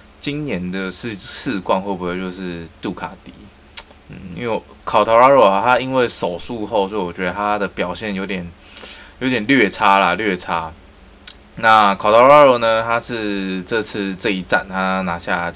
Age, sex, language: 20-39, male, Chinese